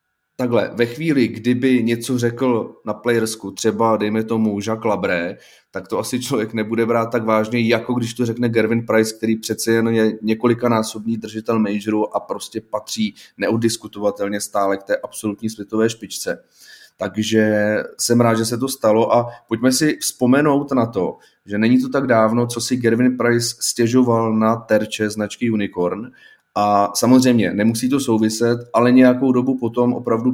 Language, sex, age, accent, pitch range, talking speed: Czech, male, 30-49, native, 110-125 Hz, 160 wpm